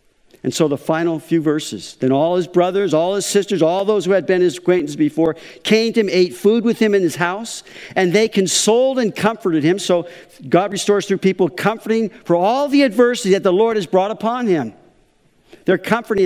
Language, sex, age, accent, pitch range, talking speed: English, male, 50-69, American, 160-220 Hz, 205 wpm